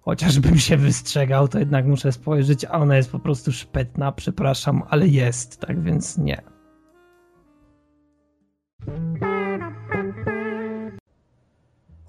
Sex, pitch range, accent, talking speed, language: male, 140-195 Hz, native, 100 wpm, Polish